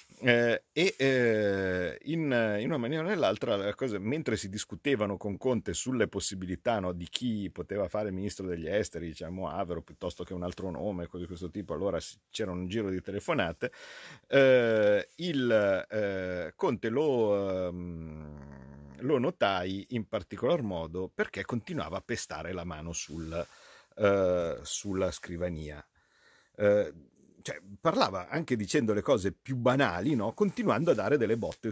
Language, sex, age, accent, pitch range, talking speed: Italian, male, 50-69, native, 90-120 Hz, 150 wpm